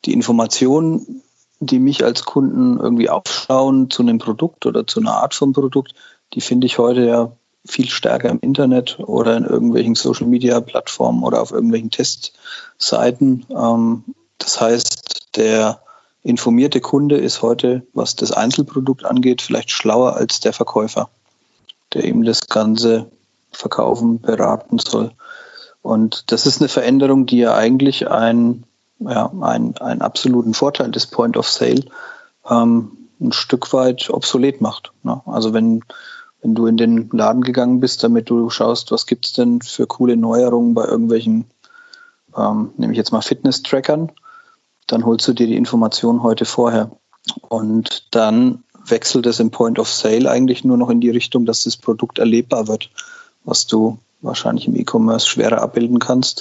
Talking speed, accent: 145 wpm, German